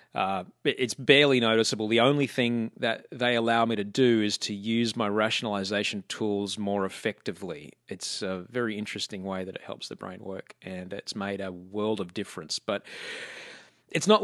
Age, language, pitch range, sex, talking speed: 30-49, English, 105-125 Hz, male, 175 wpm